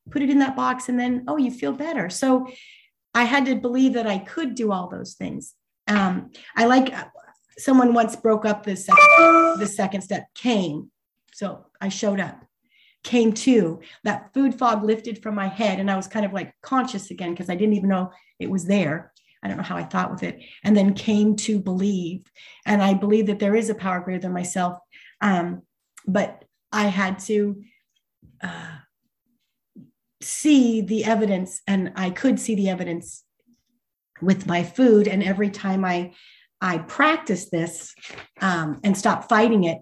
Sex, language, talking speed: female, English, 180 wpm